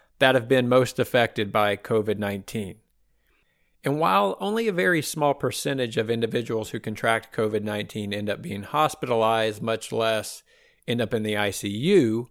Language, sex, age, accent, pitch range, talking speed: English, male, 40-59, American, 110-135 Hz, 145 wpm